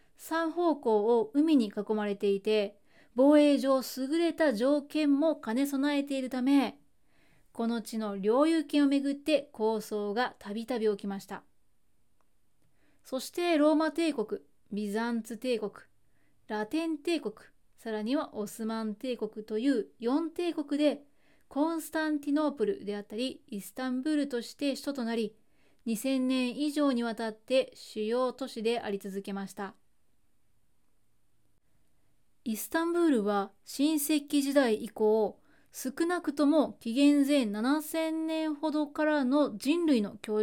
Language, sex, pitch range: Japanese, female, 215-290 Hz